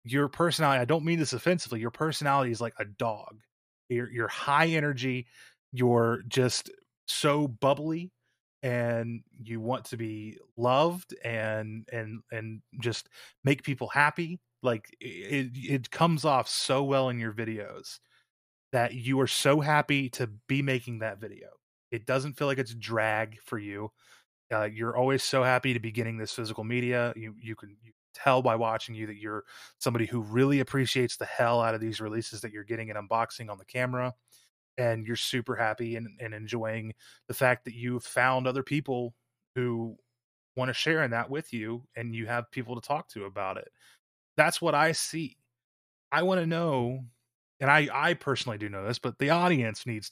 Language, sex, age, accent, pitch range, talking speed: English, male, 20-39, American, 115-135 Hz, 180 wpm